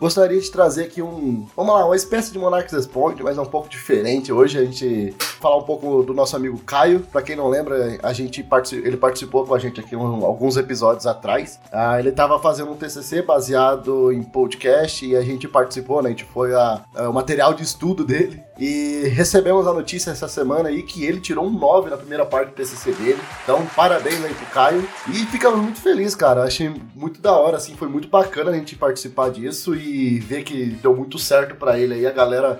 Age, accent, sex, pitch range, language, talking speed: 20-39, Brazilian, male, 125-170 Hz, Portuguese, 215 wpm